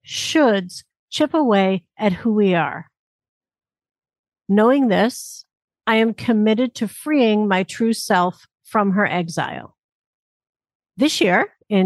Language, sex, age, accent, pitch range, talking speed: English, female, 50-69, American, 185-235 Hz, 115 wpm